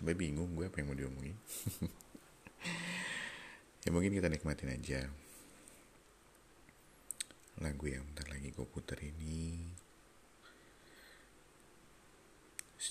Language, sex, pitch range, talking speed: Indonesian, male, 70-80 Hz, 95 wpm